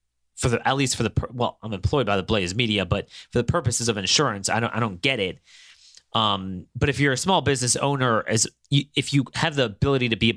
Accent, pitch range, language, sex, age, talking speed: American, 100-145 Hz, English, male, 30-49, 250 wpm